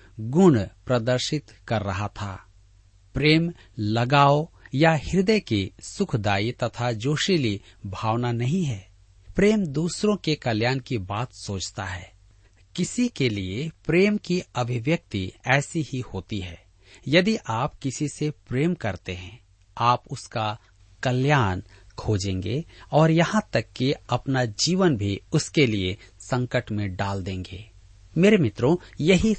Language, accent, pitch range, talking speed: Hindi, native, 100-150 Hz, 125 wpm